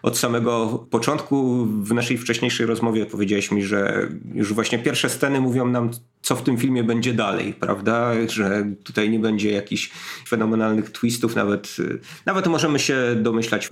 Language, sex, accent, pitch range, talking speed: Polish, male, native, 105-130 Hz, 150 wpm